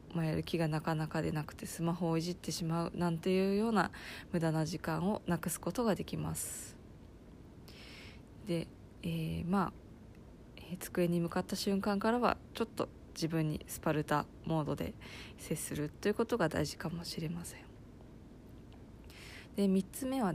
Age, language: 20-39, Japanese